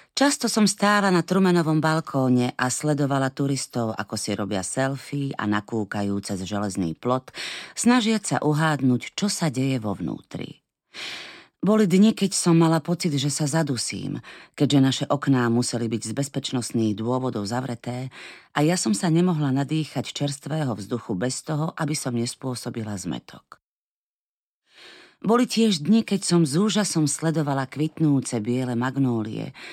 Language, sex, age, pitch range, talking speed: Slovak, female, 30-49, 120-165 Hz, 140 wpm